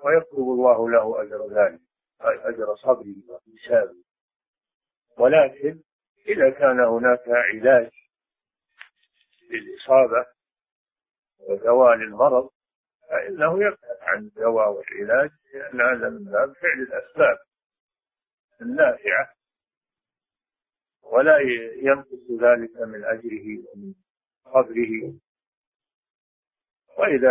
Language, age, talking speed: Arabic, 50-69, 80 wpm